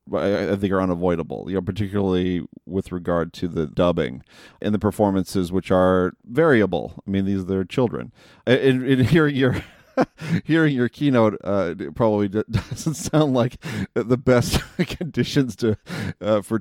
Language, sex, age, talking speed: English, male, 40-59, 155 wpm